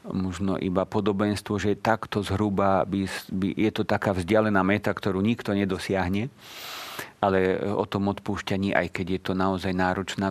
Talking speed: 140 wpm